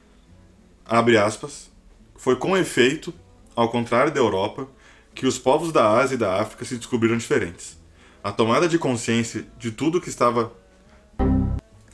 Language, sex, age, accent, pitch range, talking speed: Portuguese, male, 20-39, Brazilian, 95-125 Hz, 140 wpm